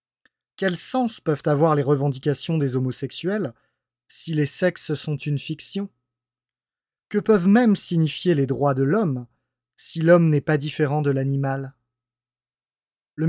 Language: French